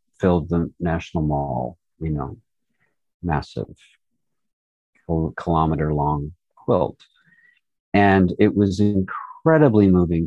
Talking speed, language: 90 wpm, English